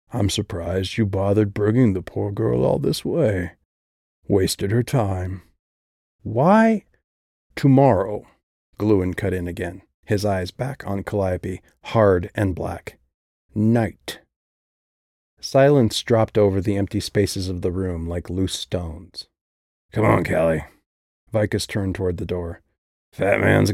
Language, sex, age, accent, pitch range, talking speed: English, male, 40-59, American, 85-110 Hz, 130 wpm